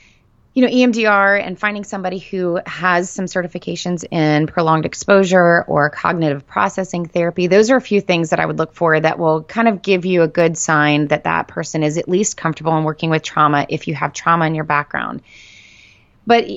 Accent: American